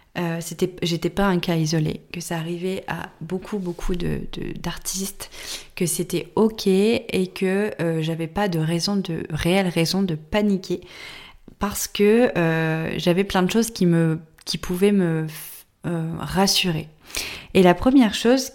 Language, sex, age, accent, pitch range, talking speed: French, female, 20-39, French, 160-190 Hz, 160 wpm